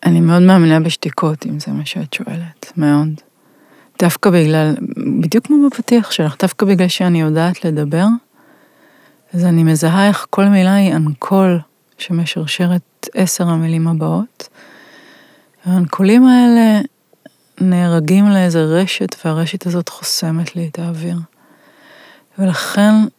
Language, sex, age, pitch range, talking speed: Hebrew, female, 30-49, 170-205 Hz, 115 wpm